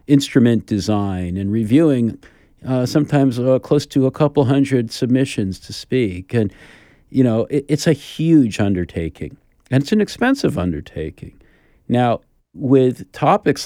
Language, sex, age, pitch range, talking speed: English, male, 50-69, 90-120 Hz, 135 wpm